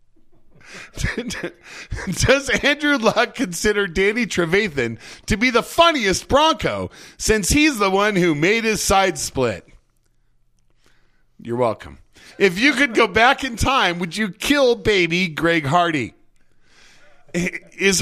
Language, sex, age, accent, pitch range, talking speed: English, male, 40-59, American, 165-230 Hz, 120 wpm